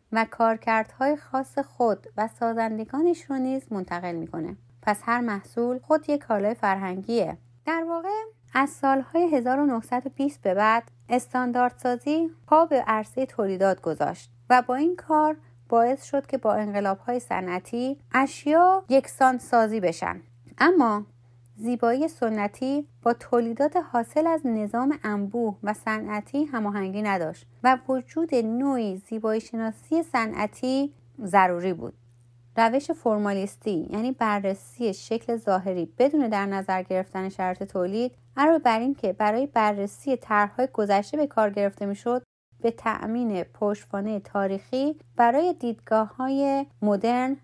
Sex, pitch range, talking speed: female, 200-265 Hz, 125 wpm